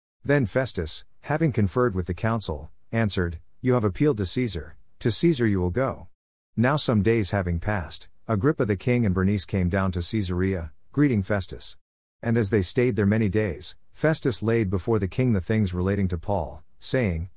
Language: English